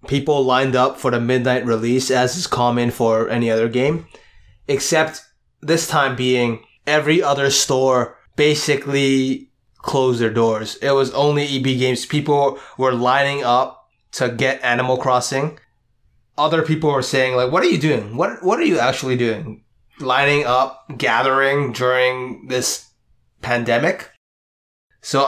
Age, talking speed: 20-39, 140 wpm